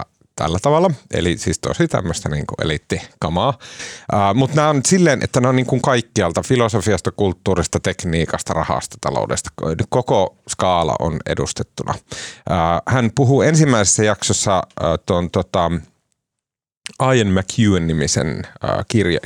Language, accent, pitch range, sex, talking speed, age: Finnish, native, 90-130 Hz, male, 115 wpm, 30-49